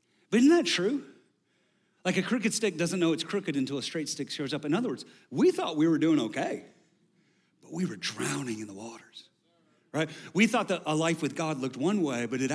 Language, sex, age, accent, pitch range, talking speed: English, male, 40-59, American, 130-185 Hz, 225 wpm